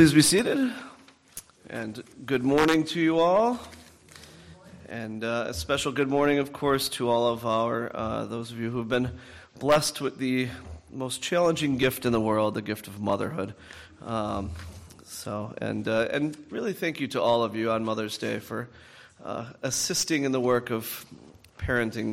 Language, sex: English, male